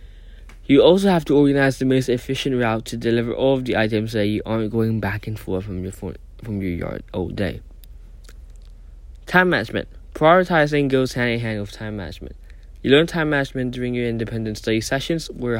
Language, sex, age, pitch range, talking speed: English, male, 10-29, 105-140 Hz, 190 wpm